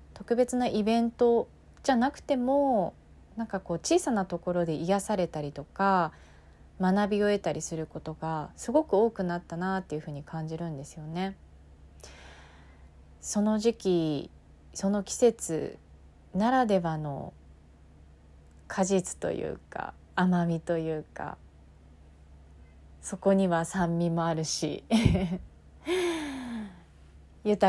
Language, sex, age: Japanese, female, 30-49